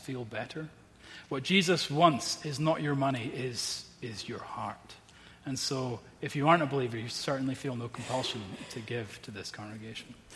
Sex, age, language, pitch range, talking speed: male, 30-49, English, 130-165 Hz, 175 wpm